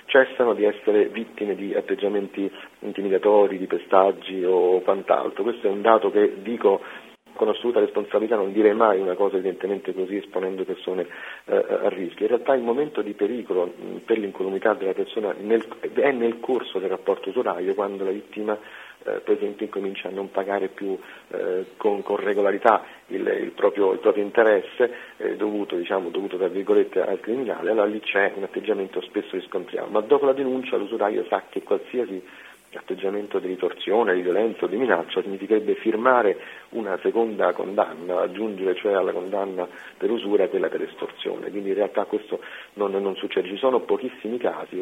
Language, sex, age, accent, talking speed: Italian, male, 50-69, native, 165 wpm